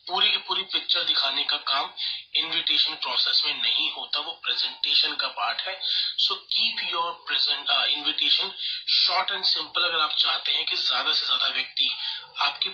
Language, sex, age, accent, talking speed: Hindi, male, 30-49, native, 165 wpm